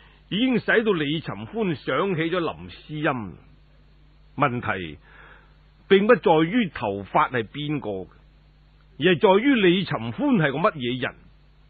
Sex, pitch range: male, 130-200 Hz